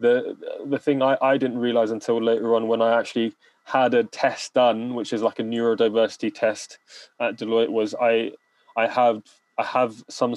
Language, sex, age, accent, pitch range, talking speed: English, male, 20-39, British, 110-125 Hz, 185 wpm